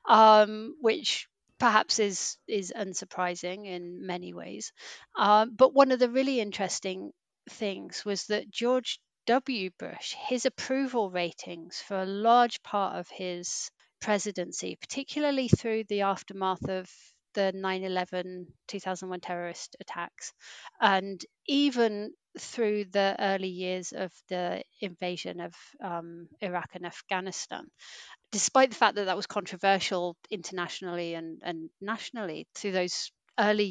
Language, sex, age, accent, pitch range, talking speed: English, female, 40-59, British, 185-230 Hz, 125 wpm